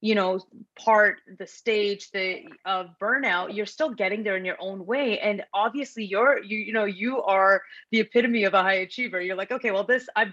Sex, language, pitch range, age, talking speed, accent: female, English, 185-235 Hz, 30-49, 210 wpm, American